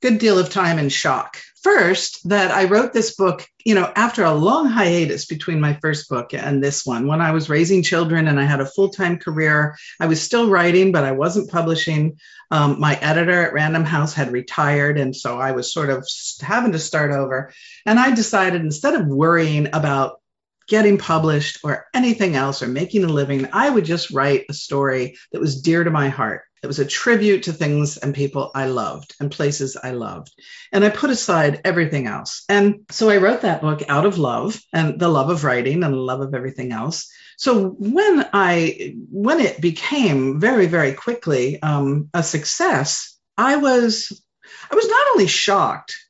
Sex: female